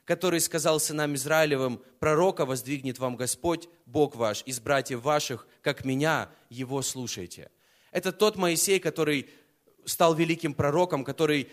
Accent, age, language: native, 20-39, Russian